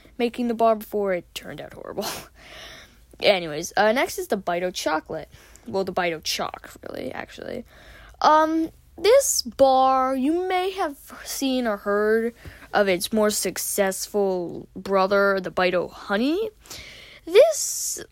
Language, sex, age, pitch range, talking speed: English, female, 20-39, 190-275 Hz, 130 wpm